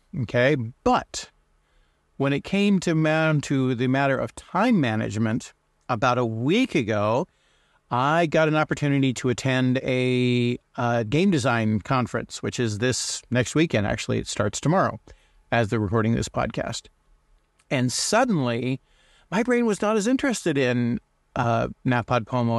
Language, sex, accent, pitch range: English, male, American, 120-145 Hz